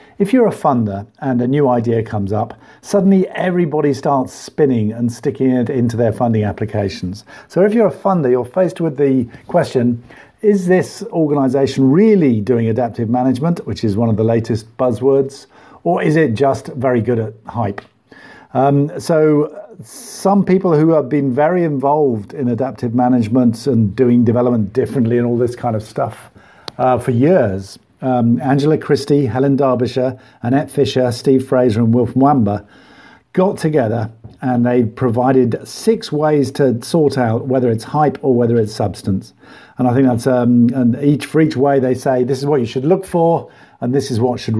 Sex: male